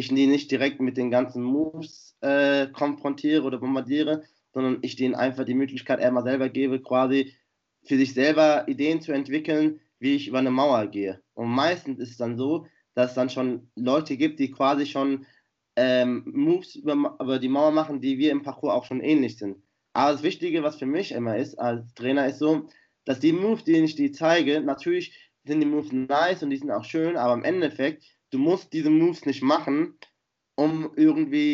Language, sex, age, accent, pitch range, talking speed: German, male, 20-39, German, 130-155 Hz, 195 wpm